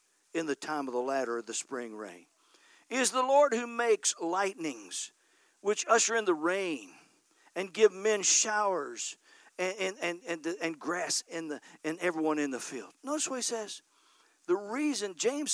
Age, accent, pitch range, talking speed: 50-69, American, 200-295 Hz, 175 wpm